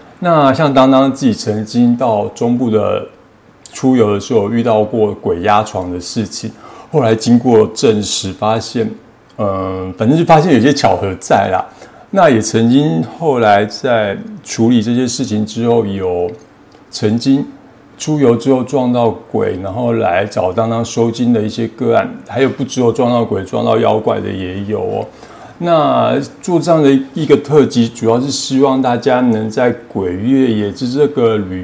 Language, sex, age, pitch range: Chinese, male, 50-69, 110-135 Hz